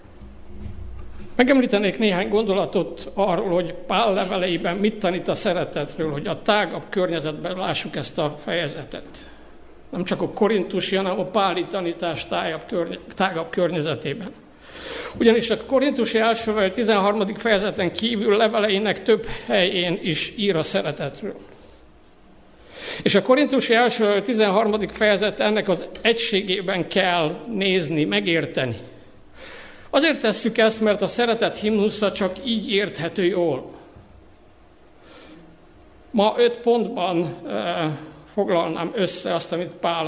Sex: male